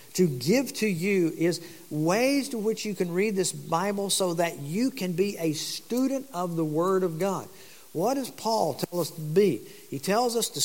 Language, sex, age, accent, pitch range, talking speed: English, male, 50-69, American, 160-210 Hz, 205 wpm